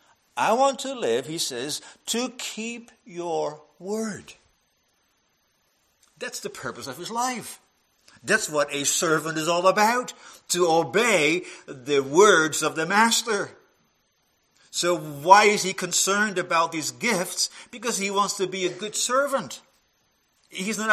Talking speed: 140 wpm